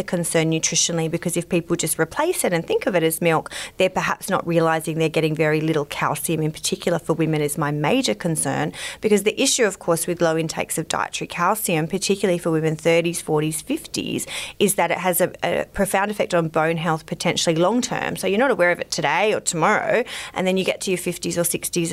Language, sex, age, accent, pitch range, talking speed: English, female, 30-49, Australian, 160-190 Hz, 220 wpm